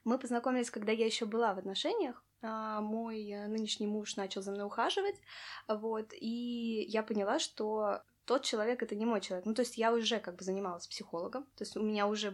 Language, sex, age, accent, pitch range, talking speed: Russian, female, 20-39, native, 185-220 Hz, 195 wpm